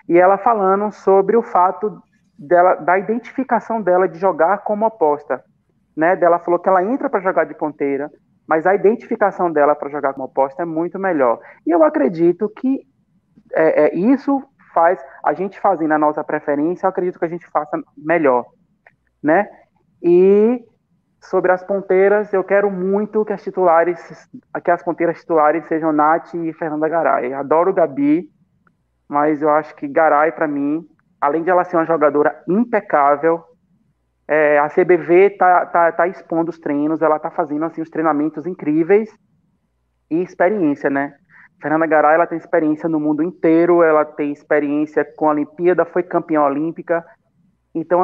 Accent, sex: Brazilian, male